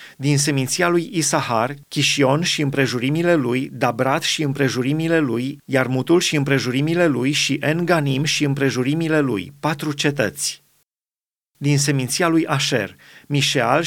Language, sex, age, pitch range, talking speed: Romanian, male, 30-49, 135-160 Hz, 120 wpm